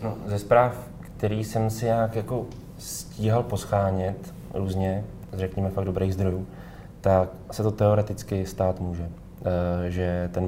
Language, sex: Czech, male